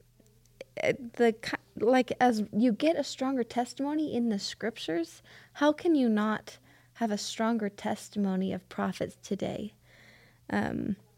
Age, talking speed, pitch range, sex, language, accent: 20-39, 125 wpm, 185-240 Hz, female, English, American